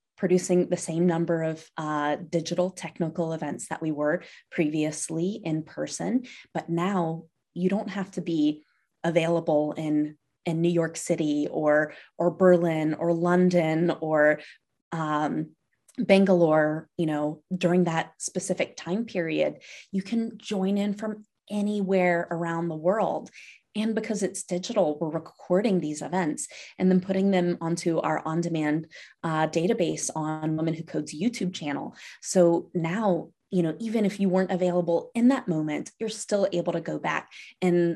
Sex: female